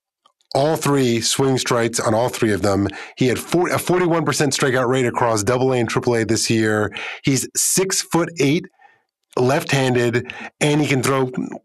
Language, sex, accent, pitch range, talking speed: English, male, American, 120-150 Hz, 185 wpm